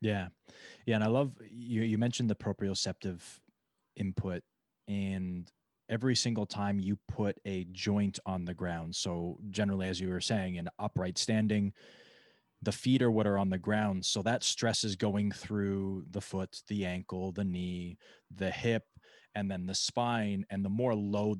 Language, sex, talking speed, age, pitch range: English, male, 170 wpm, 20-39, 95-110 Hz